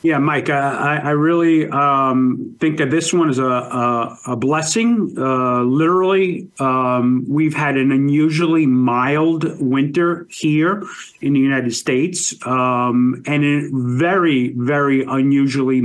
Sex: male